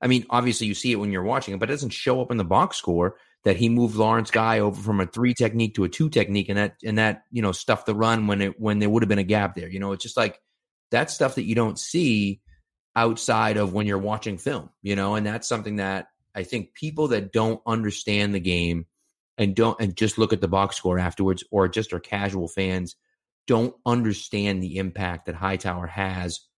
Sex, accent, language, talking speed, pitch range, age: male, American, English, 235 wpm, 95-120 Hz, 30-49